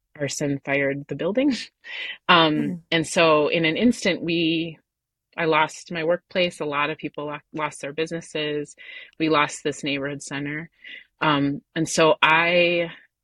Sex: female